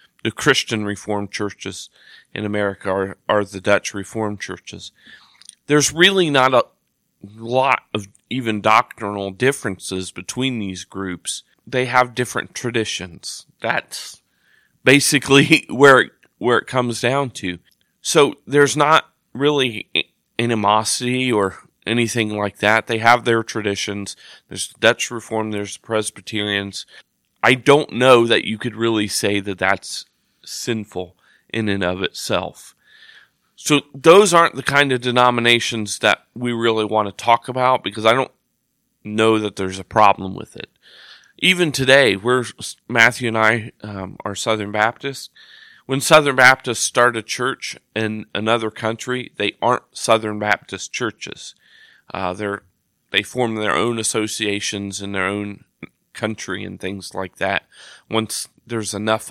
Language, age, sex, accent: English, 40-59, male, American